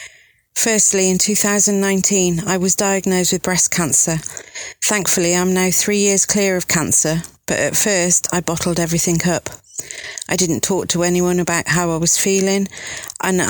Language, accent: English, British